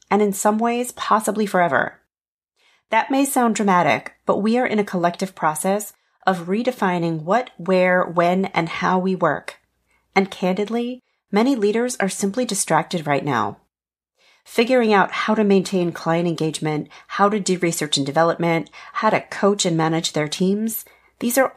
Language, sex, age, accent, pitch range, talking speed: English, female, 40-59, American, 175-225 Hz, 160 wpm